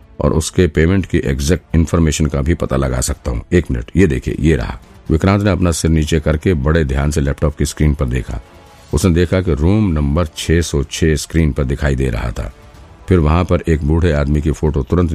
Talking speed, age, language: 60 wpm, 50-69, Hindi